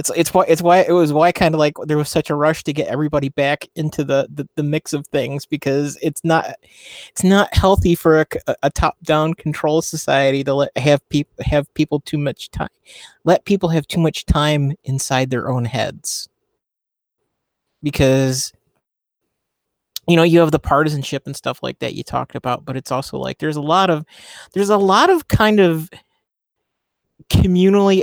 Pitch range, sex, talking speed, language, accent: 140-165 Hz, male, 190 wpm, English, American